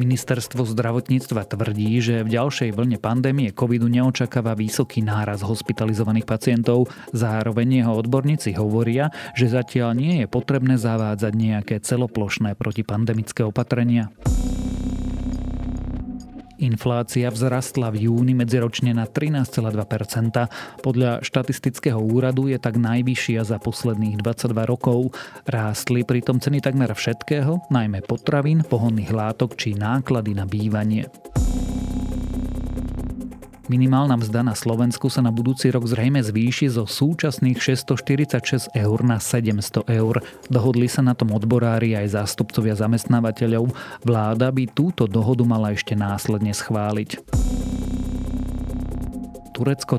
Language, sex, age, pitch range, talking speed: Slovak, male, 30-49, 110-130 Hz, 110 wpm